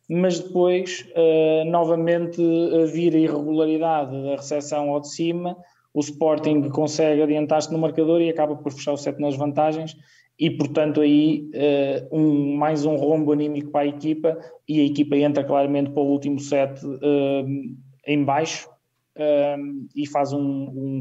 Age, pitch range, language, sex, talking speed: 20-39, 135-160 Hz, Portuguese, male, 160 wpm